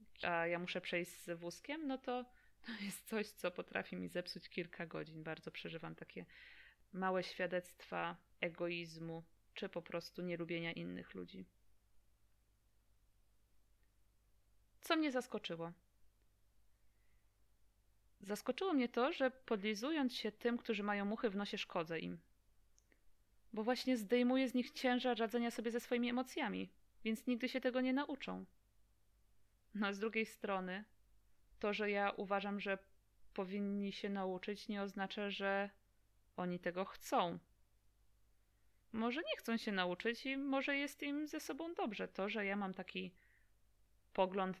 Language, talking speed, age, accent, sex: Polish, 135 wpm, 20-39, native, female